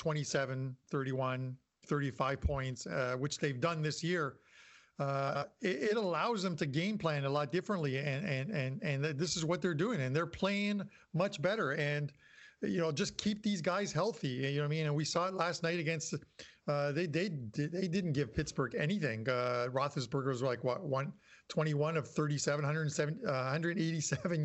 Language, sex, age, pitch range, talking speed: English, male, 50-69, 140-180 Hz, 185 wpm